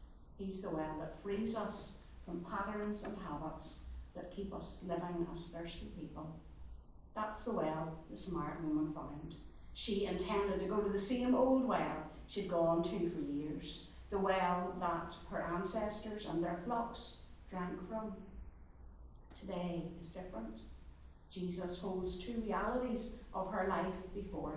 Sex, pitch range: female, 160-210 Hz